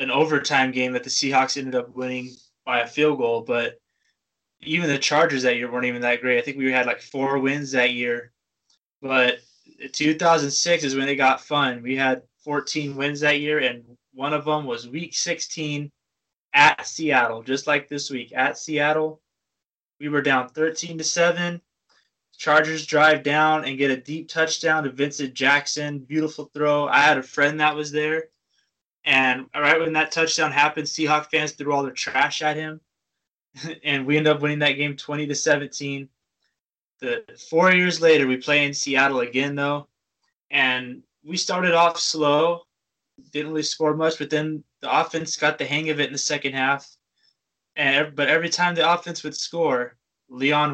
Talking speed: 175 wpm